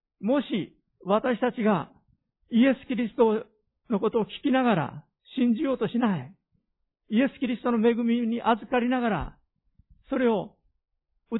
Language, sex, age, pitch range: Japanese, male, 50-69, 155-235 Hz